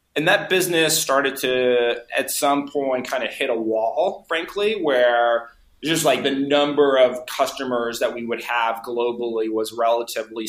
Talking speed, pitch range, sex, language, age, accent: 160 wpm, 115-140 Hz, male, English, 20-39, American